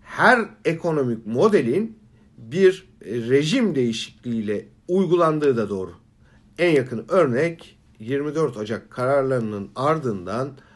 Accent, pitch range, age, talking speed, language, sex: Turkish, 120-195 Hz, 50-69, 90 wpm, German, male